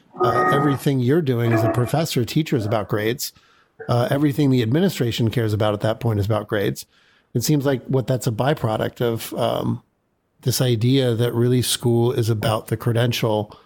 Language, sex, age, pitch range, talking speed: English, male, 50-69, 115-135 Hz, 180 wpm